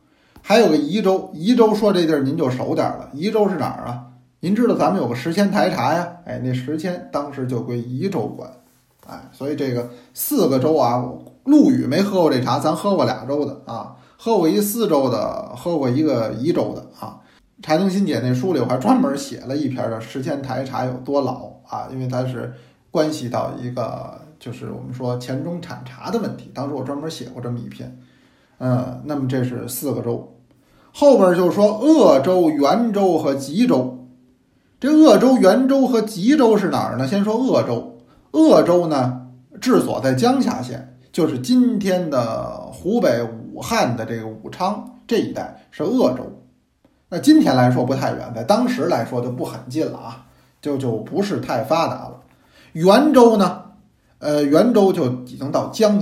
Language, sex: Chinese, male